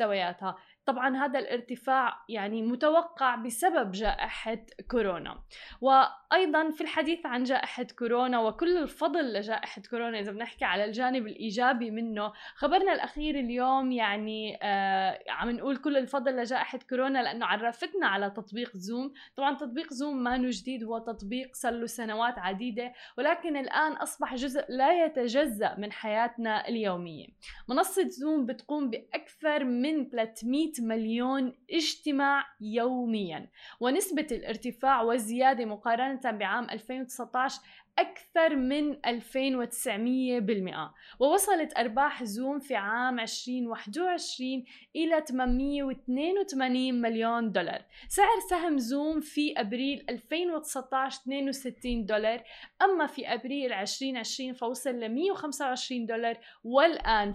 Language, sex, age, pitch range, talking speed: Arabic, female, 10-29, 230-280 Hz, 110 wpm